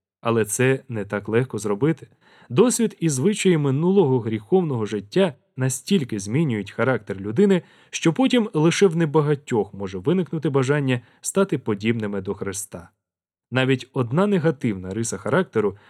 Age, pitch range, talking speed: 20-39, 110-165 Hz, 125 wpm